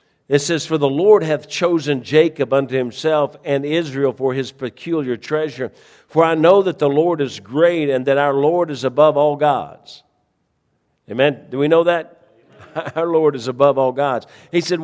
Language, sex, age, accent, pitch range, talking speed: English, male, 50-69, American, 135-160 Hz, 180 wpm